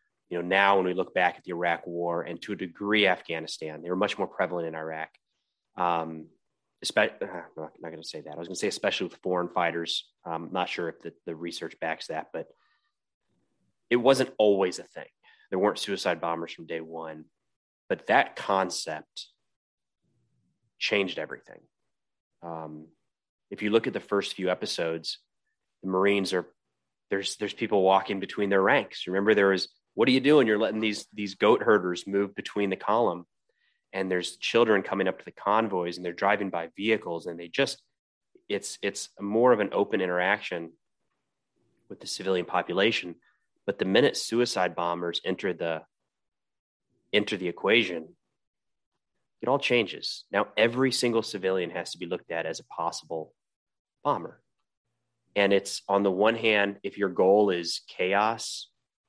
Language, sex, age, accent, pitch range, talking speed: English, male, 30-49, American, 85-105 Hz, 175 wpm